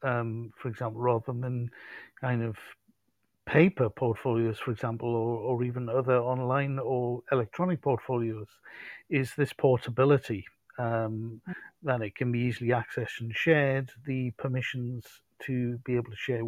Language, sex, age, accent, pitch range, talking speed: English, male, 50-69, British, 120-155 Hz, 140 wpm